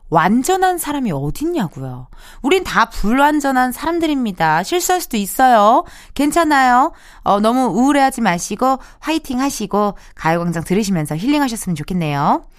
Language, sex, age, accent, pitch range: Korean, female, 20-39, native, 190-285 Hz